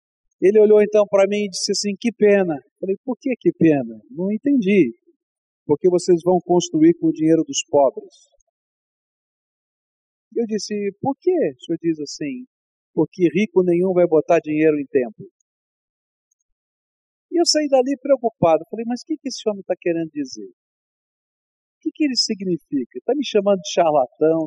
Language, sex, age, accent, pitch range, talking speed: Portuguese, male, 50-69, Brazilian, 155-225 Hz, 170 wpm